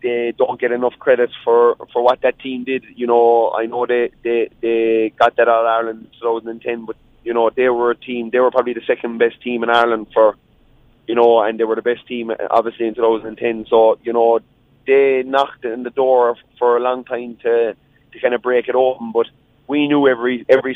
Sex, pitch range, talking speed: male, 115-125 Hz, 225 wpm